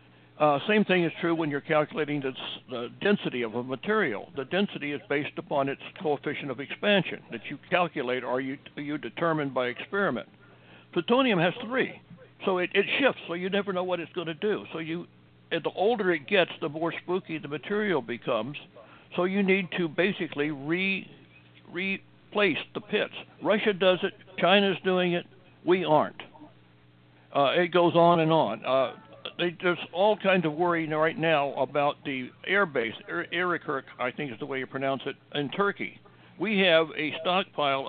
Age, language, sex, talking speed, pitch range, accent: 60-79, English, male, 175 wpm, 135-175 Hz, American